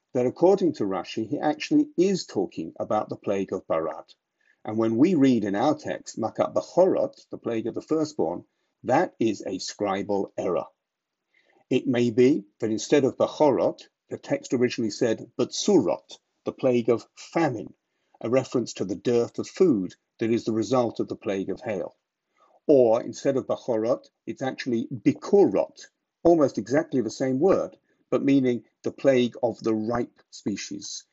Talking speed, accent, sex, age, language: 160 wpm, British, male, 50-69, English